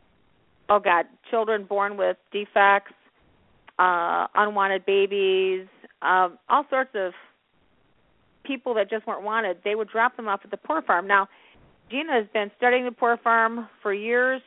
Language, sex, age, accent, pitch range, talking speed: English, female, 40-59, American, 190-235 Hz, 155 wpm